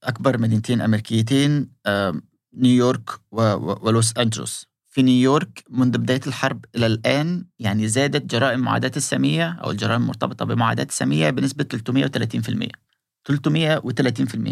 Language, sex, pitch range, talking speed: Arabic, male, 115-145 Hz, 105 wpm